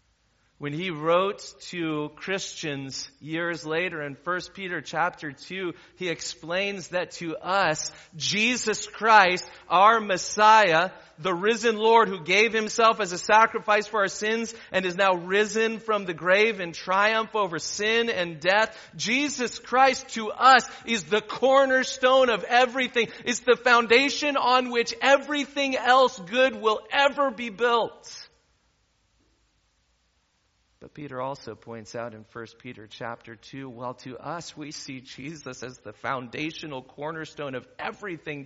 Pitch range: 135-225 Hz